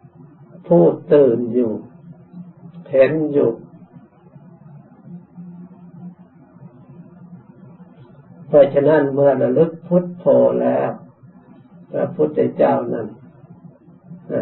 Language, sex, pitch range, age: Thai, male, 140-175 Hz, 60-79